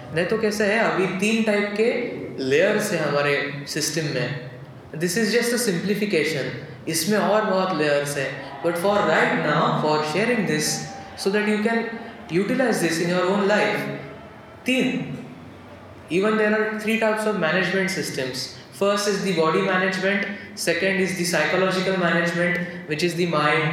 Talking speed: 160 wpm